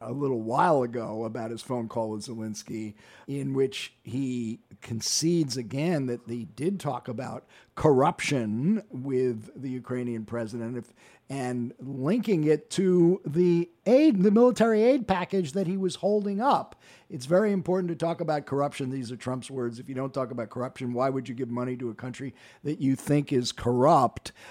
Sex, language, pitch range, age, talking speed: male, English, 125-170 Hz, 50-69, 170 wpm